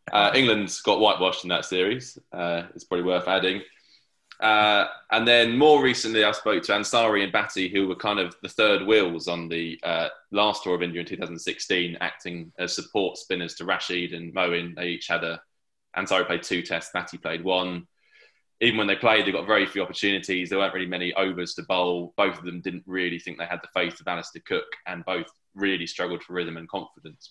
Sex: male